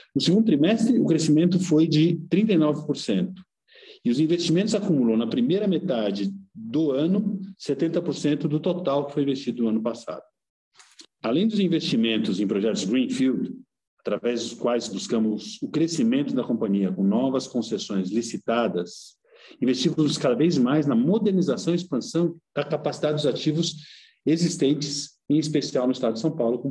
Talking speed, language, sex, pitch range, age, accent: 145 wpm, Portuguese, male, 130-180 Hz, 50-69, Brazilian